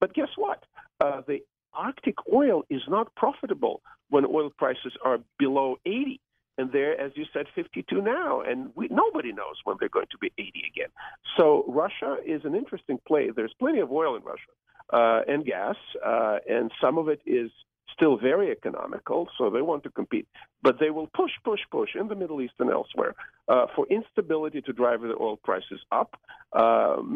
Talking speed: 185 wpm